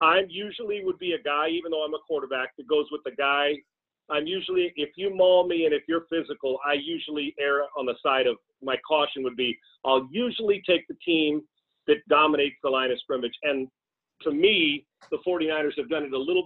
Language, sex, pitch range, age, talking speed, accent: English, male, 145-205 Hz, 40-59, 210 wpm, American